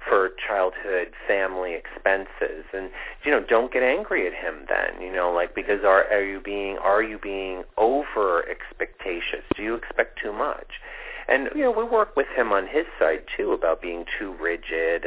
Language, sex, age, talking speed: English, male, 40-59, 185 wpm